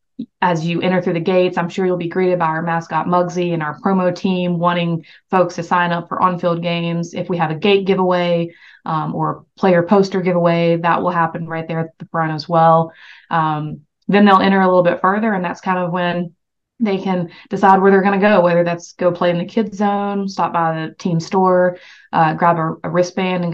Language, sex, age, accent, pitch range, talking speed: English, female, 20-39, American, 165-185 Hz, 225 wpm